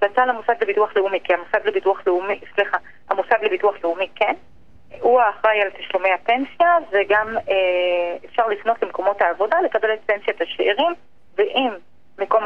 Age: 30-49